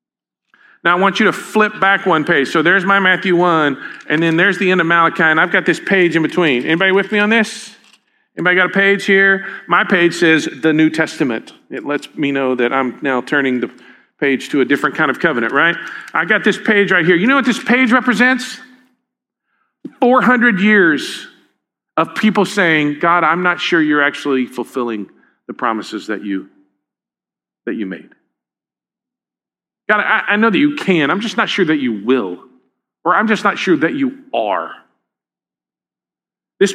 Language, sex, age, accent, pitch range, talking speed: English, male, 40-59, American, 170-225 Hz, 185 wpm